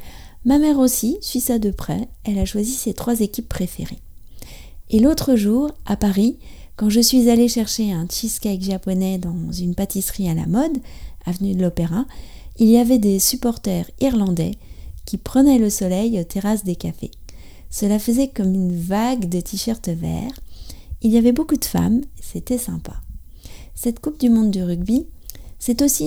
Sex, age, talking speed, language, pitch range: female, 30-49, 170 wpm, French, 185-240 Hz